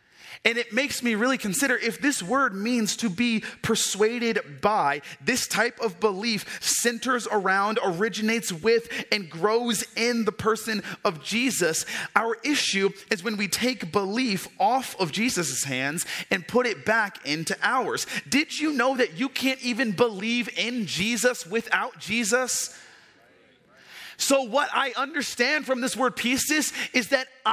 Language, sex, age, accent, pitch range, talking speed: English, male, 30-49, American, 190-255 Hz, 150 wpm